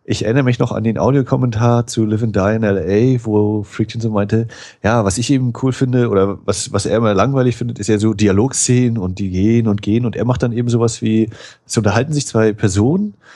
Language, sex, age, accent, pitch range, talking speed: German, male, 30-49, German, 105-125 Hz, 235 wpm